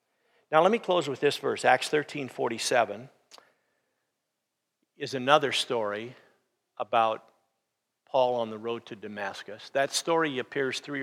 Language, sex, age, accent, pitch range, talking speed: English, male, 50-69, American, 125-175 Hz, 125 wpm